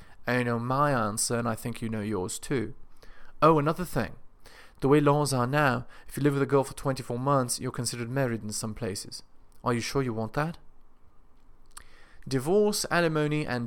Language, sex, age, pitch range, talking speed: English, male, 30-49, 115-145 Hz, 190 wpm